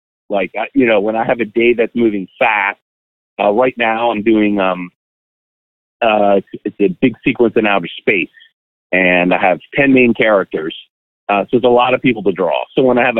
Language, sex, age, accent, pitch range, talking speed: English, male, 40-59, American, 95-125 Hz, 200 wpm